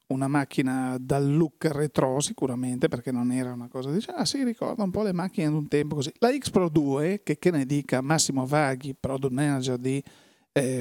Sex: male